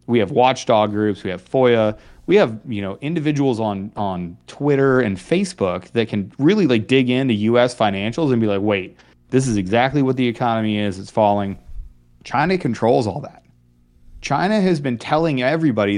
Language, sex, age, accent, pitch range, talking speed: English, male, 30-49, American, 100-130 Hz, 175 wpm